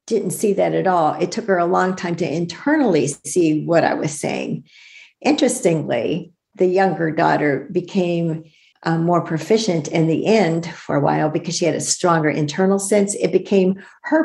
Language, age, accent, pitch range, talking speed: English, 50-69, American, 155-195 Hz, 175 wpm